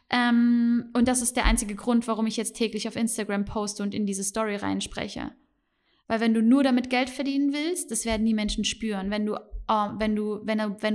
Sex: female